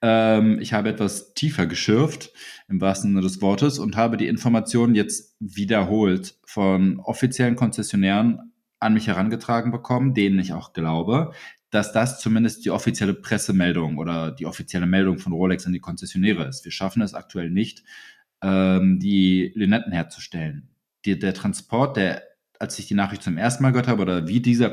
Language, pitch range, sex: German, 95-120 Hz, male